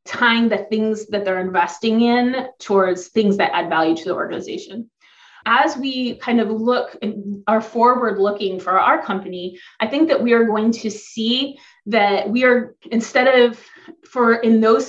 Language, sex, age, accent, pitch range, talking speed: English, female, 30-49, American, 195-245 Hz, 175 wpm